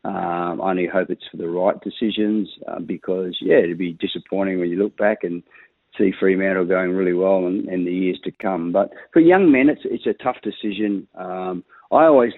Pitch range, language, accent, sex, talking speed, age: 90-110 Hz, English, Australian, male, 210 wpm, 50-69